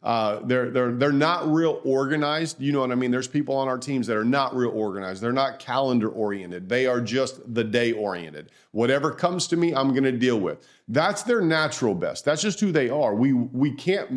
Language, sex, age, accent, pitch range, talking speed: English, male, 40-59, American, 125-160 Hz, 225 wpm